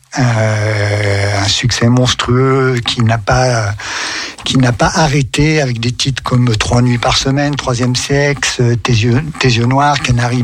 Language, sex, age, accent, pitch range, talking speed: French, male, 50-69, French, 120-150 Hz, 130 wpm